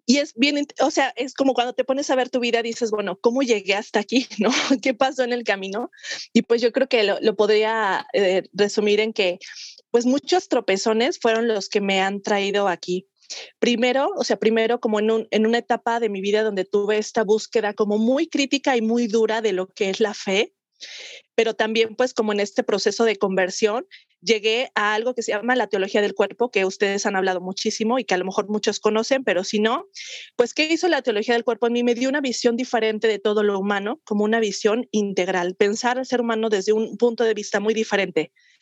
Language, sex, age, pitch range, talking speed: Spanish, female, 30-49, 205-245 Hz, 220 wpm